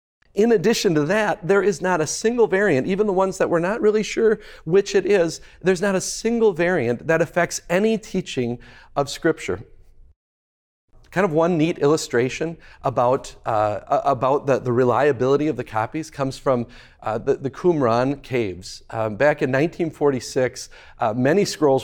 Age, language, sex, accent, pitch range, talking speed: 40-59, English, male, American, 130-180 Hz, 165 wpm